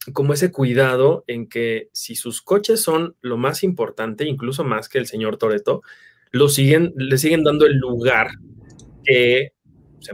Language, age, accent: Spanish, 20-39, Mexican